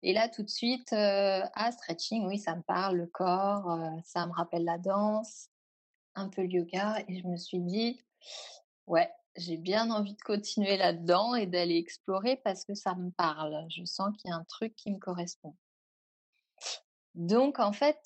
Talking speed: 190 wpm